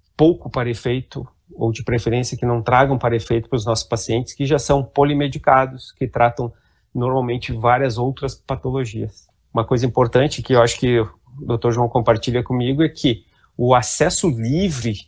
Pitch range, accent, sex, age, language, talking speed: 115-145 Hz, Brazilian, male, 30-49, Portuguese, 165 wpm